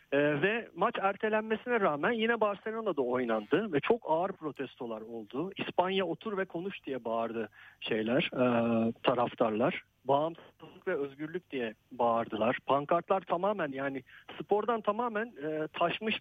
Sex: male